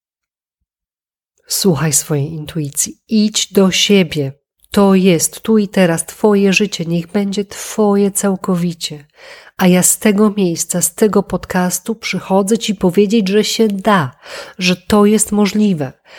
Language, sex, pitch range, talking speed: Polish, female, 175-215 Hz, 130 wpm